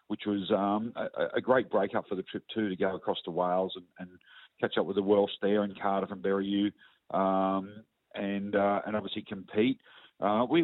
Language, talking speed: English, 210 wpm